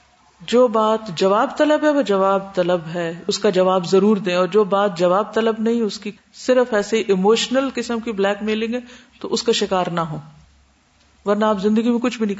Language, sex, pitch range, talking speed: Urdu, female, 185-270 Hz, 210 wpm